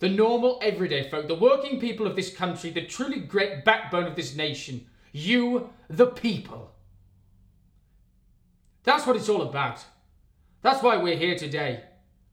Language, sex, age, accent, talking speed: English, male, 20-39, British, 145 wpm